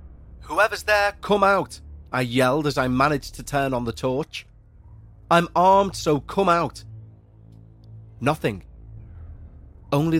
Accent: British